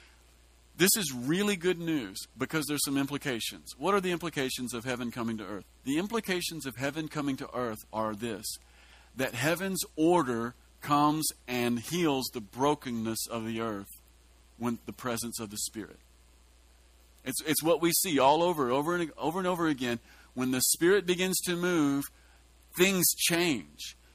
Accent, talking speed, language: American, 160 wpm, English